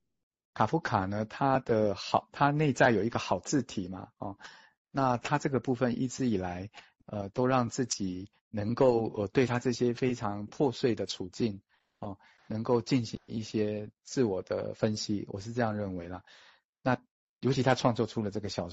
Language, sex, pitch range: Chinese, male, 100-125 Hz